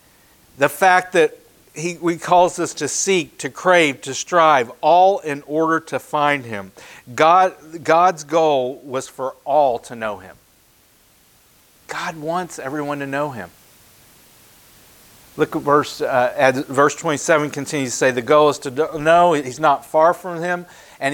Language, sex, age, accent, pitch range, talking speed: English, male, 50-69, American, 140-170 Hz, 155 wpm